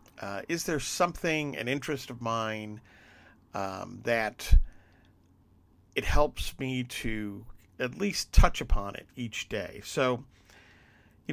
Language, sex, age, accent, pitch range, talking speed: English, male, 50-69, American, 100-130 Hz, 120 wpm